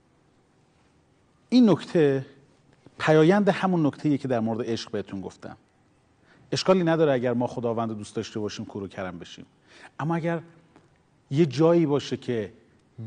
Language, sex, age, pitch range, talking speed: Persian, male, 40-59, 135-220 Hz, 135 wpm